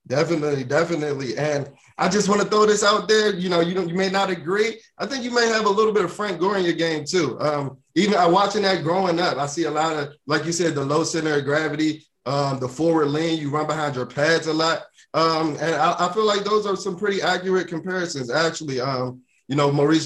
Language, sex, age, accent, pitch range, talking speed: English, male, 20-39, American, 140-170 Hz, 250 wpm